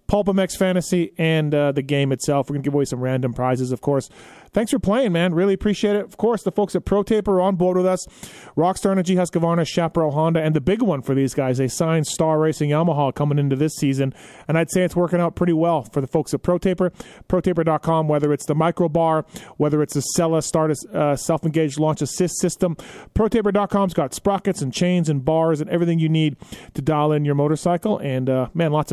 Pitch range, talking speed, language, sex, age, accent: 145-185 Hz, 220 wpm, English, male, 30-49, American